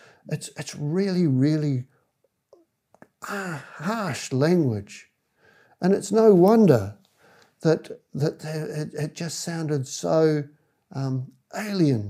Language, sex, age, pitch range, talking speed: English, male, 60-79, 125-160 Hz, 105 wpm